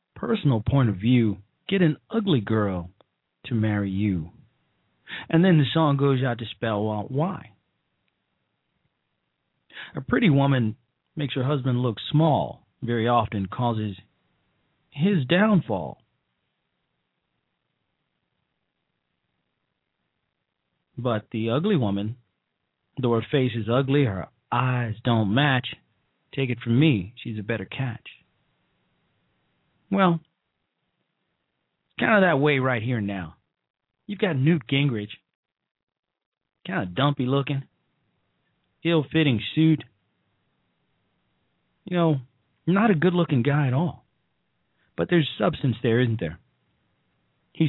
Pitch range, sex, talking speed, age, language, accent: 115-160 Hz, male, 115 wpm, 40-59, English, American